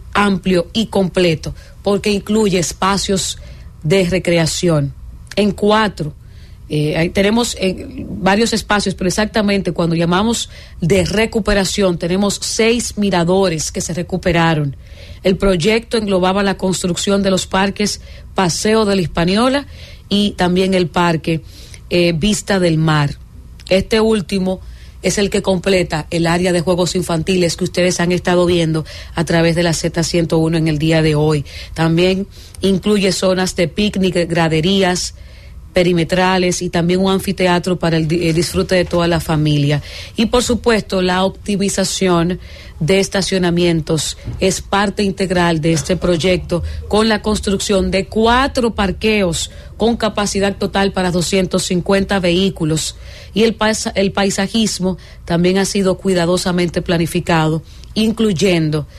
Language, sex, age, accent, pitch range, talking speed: English, female, 40-59, American, 170-200 Hz, 125 wpm